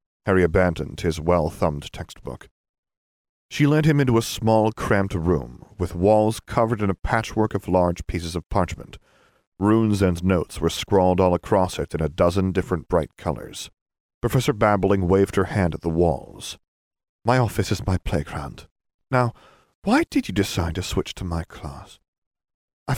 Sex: male